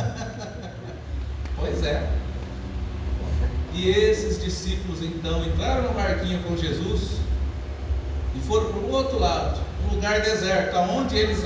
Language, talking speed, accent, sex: Portuguese, 115 wpm, Brazilian, male